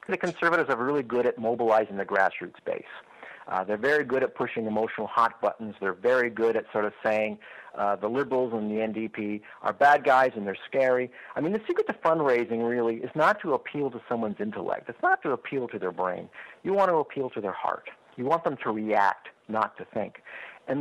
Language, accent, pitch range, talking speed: English, American, 110-145 Hz, 215 wpm